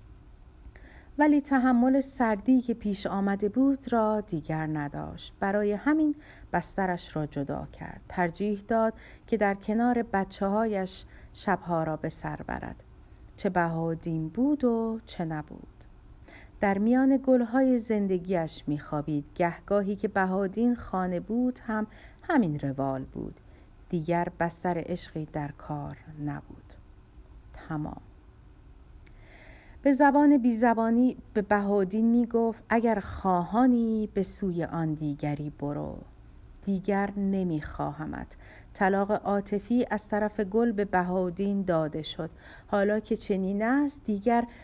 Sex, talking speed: female, 115 wpm